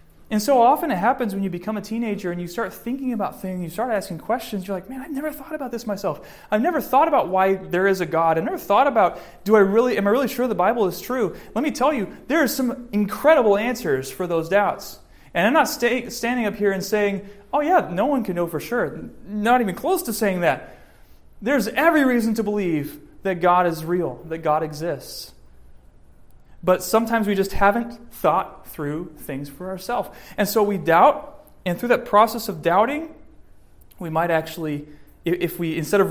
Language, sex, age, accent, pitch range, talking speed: English, male, 30-49, American, 160-235 Hz, 210 wpm